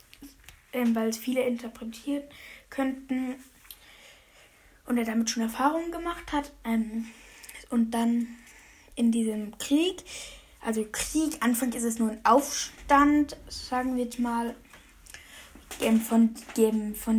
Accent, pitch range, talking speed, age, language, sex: German, 225-260 Hz, 110 wpm, 10-29, German, female